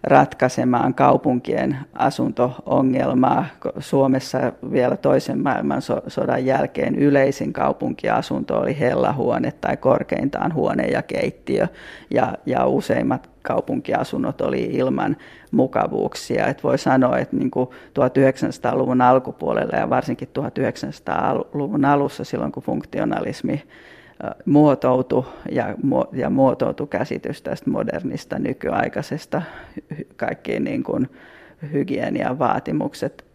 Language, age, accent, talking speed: Finnish, 40-59, native, 85 wpm